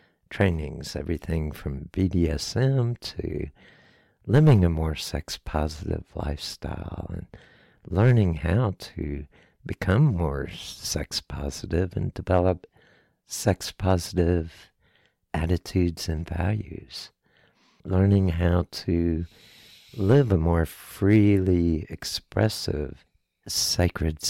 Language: English